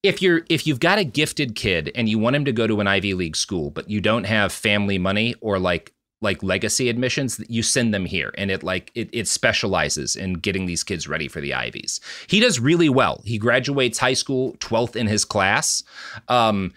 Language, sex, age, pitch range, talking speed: English, male, 30-49, 105-140 Hz, 220 wpm